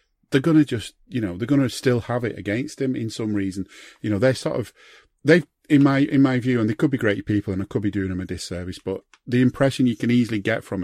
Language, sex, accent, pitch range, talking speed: English, male, British, 100-125 Hz, 265 wpm